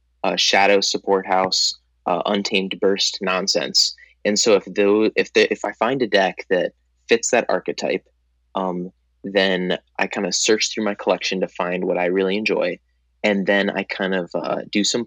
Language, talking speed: English, 185 wpm